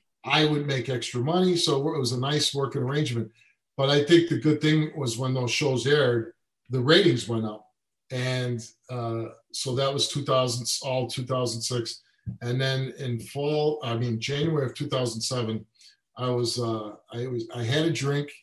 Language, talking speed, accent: English, 175 wpm, American